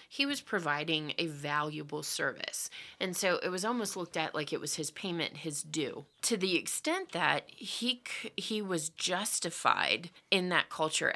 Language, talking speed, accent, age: English, 165 wpm, American, 30-49